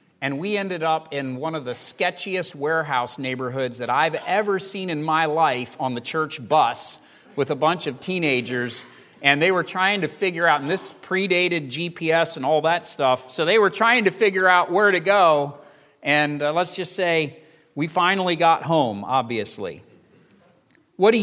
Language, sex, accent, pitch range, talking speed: English, male, American, 160-220 Hz, 180 wpm